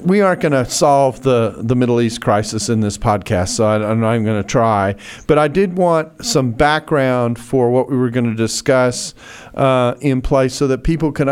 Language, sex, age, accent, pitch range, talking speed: English, male, 40-59, American, 115-135 Hz, 205 wpm